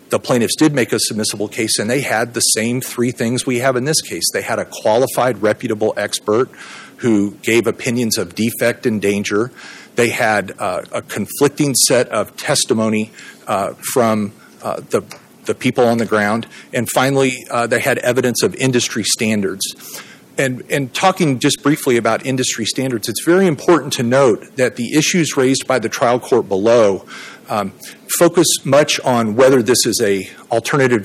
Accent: American